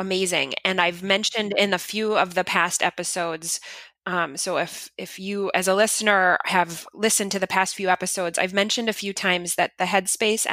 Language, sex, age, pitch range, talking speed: English, female, 20-39, 175-215 Hz, 195 wpm